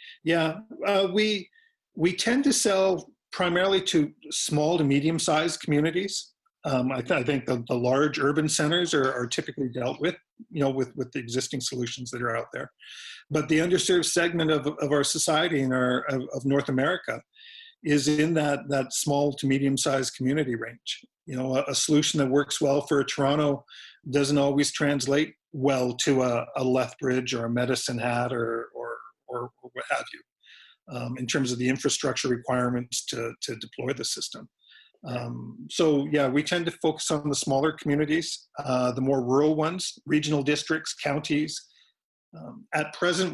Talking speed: 170 wpm